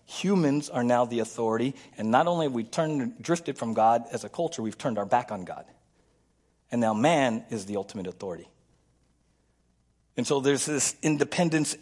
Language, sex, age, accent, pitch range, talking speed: English, male, 40-59, American, 115-170 Hz, 180 wpm